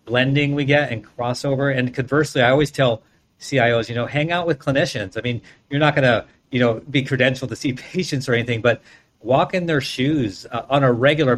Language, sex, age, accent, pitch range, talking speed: English, male, 50-69, American, 120-145 Hz, 210 wpm